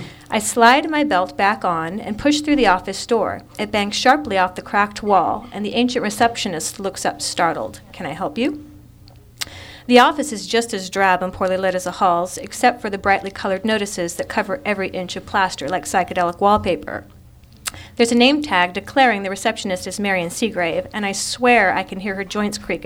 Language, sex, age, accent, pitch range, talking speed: English, female, 40-59, American, 180-230 Hz, 200 wpm